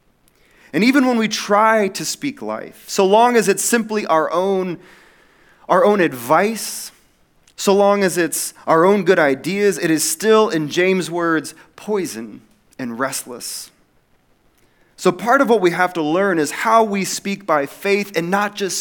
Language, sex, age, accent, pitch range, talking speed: English, male, 30-49, American, 160-205 Hz, 165 wpm